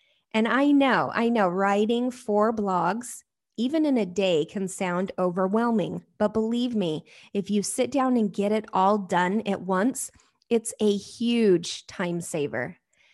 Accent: American